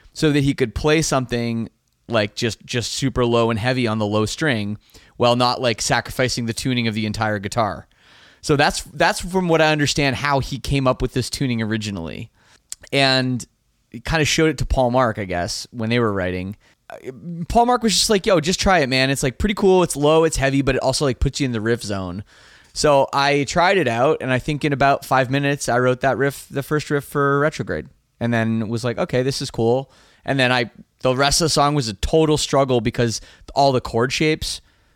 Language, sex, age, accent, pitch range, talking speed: English, male, 20-39, American, 115-140 Hz, 225 wpm